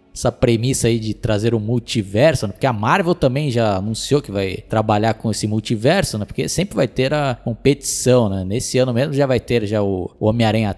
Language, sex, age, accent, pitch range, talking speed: Portuguese, male, 20-39, Brazilian, 105-140 Hz, 210 wpm